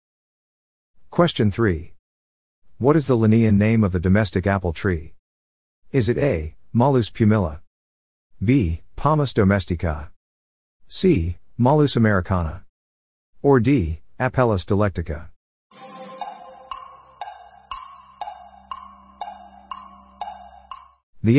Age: 50-69